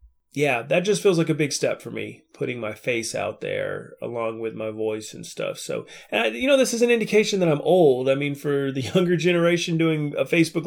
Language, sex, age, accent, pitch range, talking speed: English, male, 30-49, American, 125-175 Hz, 225 wpm